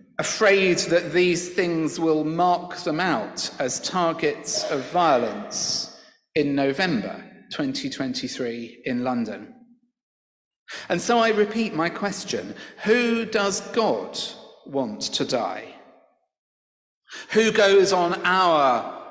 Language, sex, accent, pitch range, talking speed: English, male, British, 160-230 Hz, 105 wpm